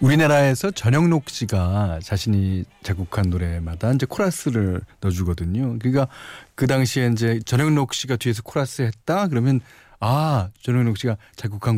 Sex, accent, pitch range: male, native, 100-150 Hz